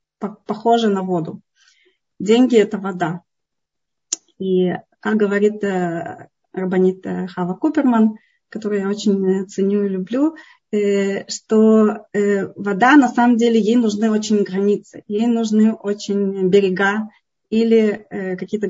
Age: 20-39